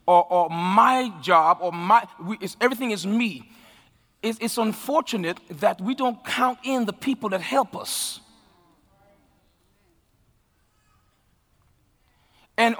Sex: male